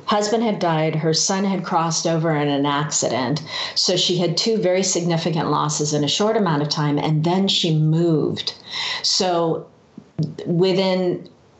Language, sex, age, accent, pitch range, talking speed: English, female, 40-59, American, 150-175 Hz, 155 wpm